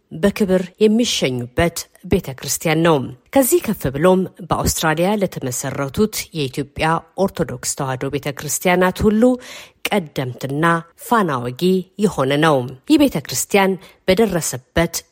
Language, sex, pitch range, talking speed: Amharic, female, 145-205 Hz, 75 wpm